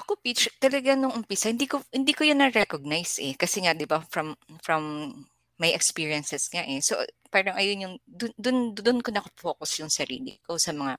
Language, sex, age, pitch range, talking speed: Filipino, female, 20-39, 180-280 Hz, 195 wpm